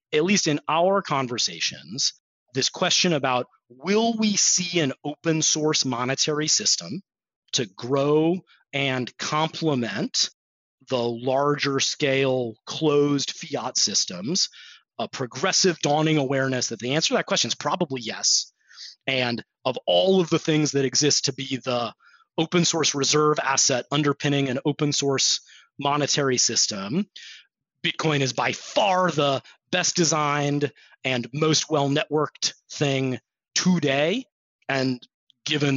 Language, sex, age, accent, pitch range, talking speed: English, male, 30-49, American, 125-155 Hz, 125 wpm